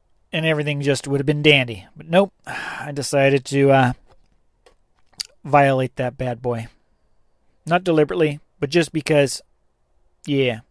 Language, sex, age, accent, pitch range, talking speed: English, male, 40-59, American, 115-155 Hz, 130 wpm